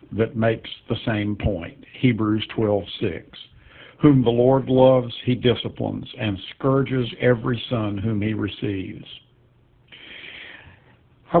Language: English